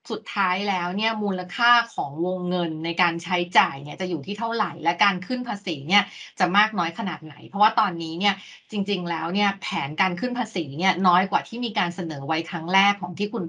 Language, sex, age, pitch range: Thai, female, 20-39, 175-220 Hz